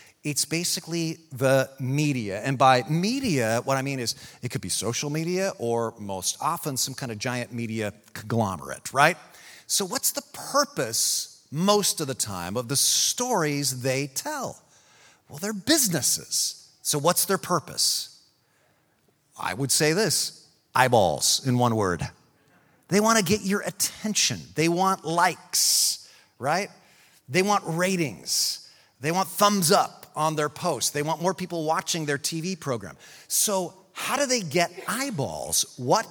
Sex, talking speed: male, 150 wpm